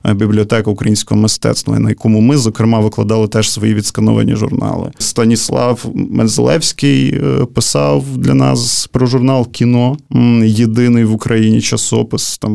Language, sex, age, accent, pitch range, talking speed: Ukrainian, male, 20-39, native, 110-120 Hz, 120 wpm